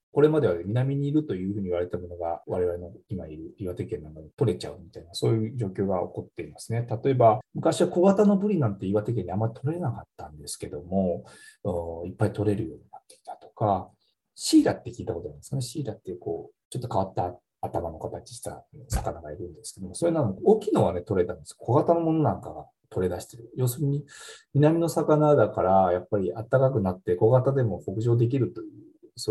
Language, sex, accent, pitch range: Japanese, male, native, 100-155 Hz